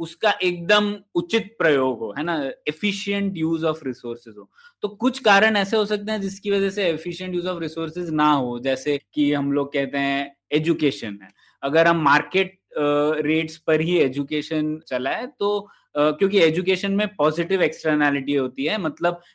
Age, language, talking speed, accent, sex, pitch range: 20-39, Hindi, 170 wpm, native, male, 145-195 Hz